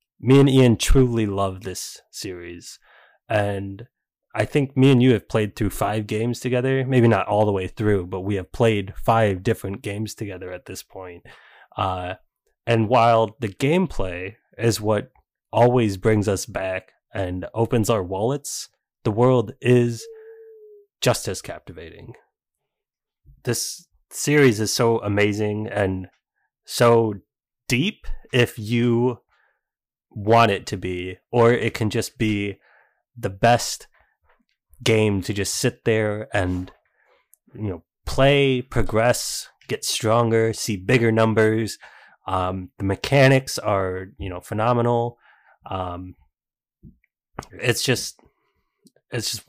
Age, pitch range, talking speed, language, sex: 20-39, 95-120 Hz, 125 wpm, English, male